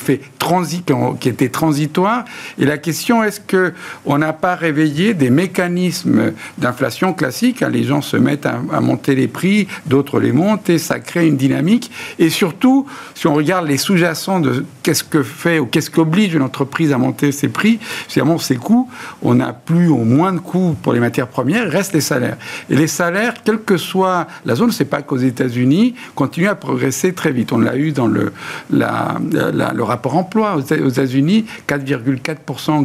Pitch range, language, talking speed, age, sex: 140-190 Hz, French, 190 wpm, 60-79, male